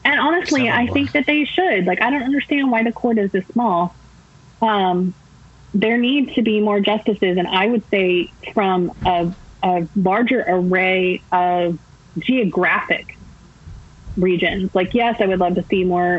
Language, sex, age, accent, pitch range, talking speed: English, female, 20-39, American, 175-205 Hz, 165 wpm